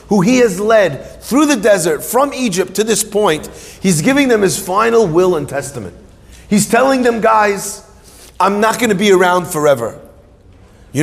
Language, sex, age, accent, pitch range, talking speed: English, male, 30-49, American, 145-210 Hz, 170 wpm